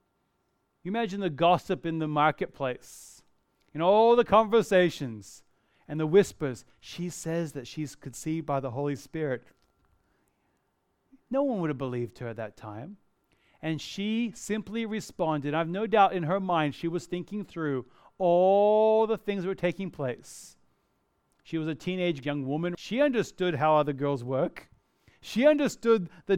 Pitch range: 155-205 Hz